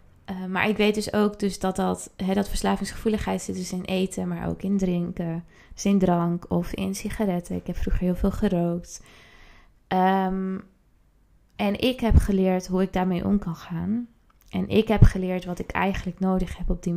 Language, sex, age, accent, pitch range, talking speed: Dutch, female, 20-39, Dutch, 175-195 Hz, 175 wpm